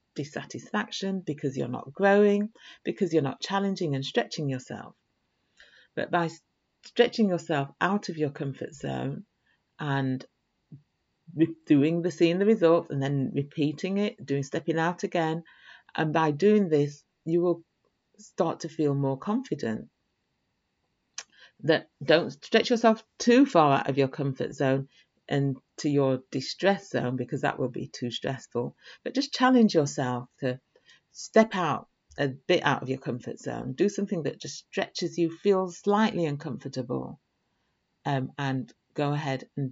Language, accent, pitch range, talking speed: English, British, 135-195 Hz, 145 wpm